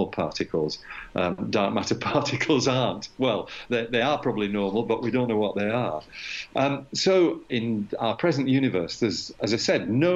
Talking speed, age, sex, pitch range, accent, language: 170 wpm, 50-69, male, 105-135 Hz, British, English